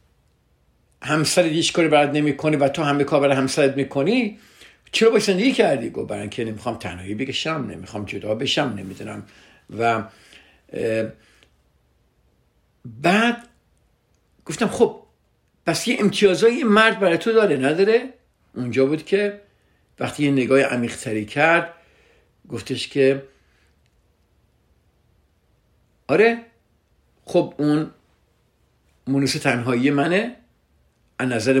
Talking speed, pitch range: 105 wpm, 115-170 Hz